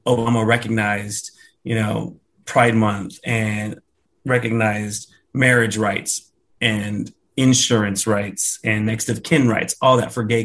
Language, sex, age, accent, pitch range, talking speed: English, male, 30-49, American, 110-130 Hz, 125 wpm